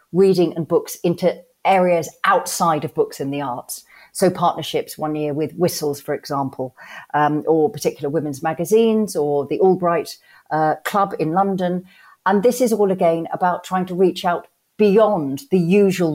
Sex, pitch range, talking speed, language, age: female, 150-185 Hz, 165 wpm, English, 40-59